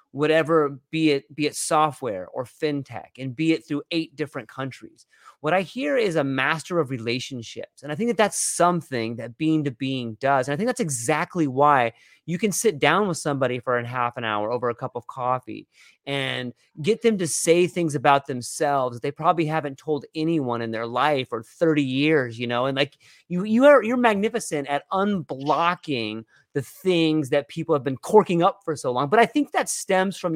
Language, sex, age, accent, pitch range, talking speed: English, male, 30-49, American, 140-195 Hz, 205 wpm